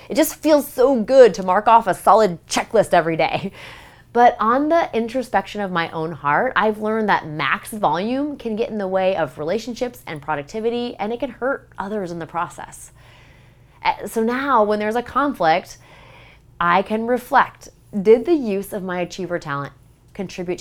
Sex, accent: female, American